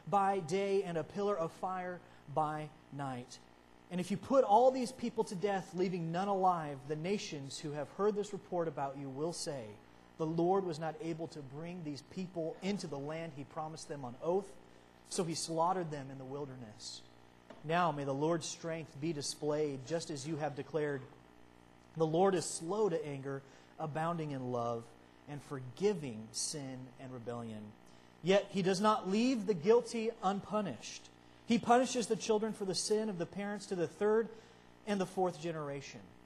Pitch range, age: 125-185 Hz, 30-49